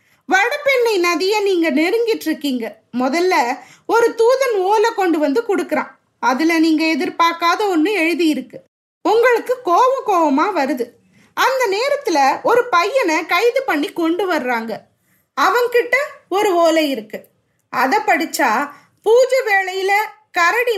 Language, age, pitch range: Tamil, 20-39, 290-410 Hz